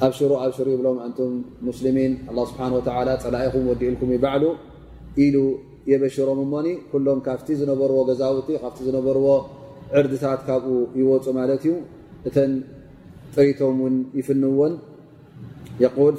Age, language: 30-49, Amharic